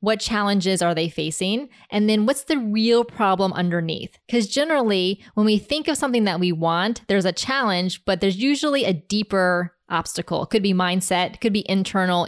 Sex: female